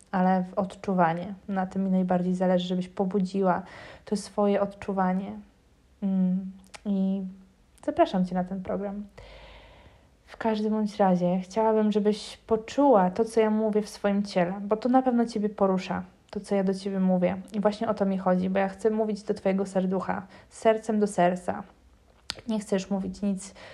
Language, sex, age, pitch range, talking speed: Polish, female, 20-39, 190-210 Hz, 170 wpm